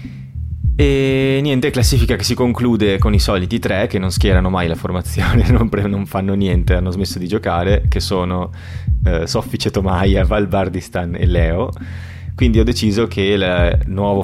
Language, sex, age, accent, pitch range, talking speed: Italian, male, 30-49, native, 90-100 Hz, 160 wpm